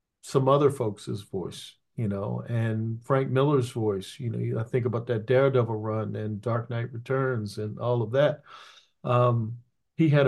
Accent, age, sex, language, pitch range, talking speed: American, 50-69, male, English, 115-135 Hz, 170 wpm